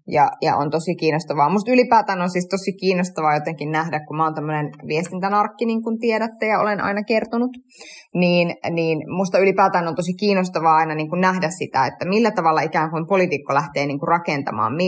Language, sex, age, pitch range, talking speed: Finnish, female, 20-39, 155-195 Hz, 185 wpm